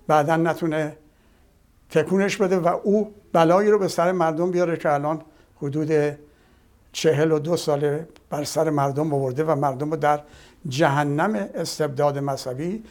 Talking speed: 140 wpm